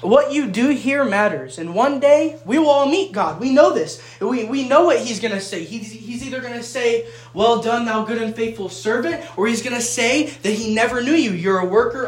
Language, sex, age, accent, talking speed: English, male, 20-39, American, 250 wpm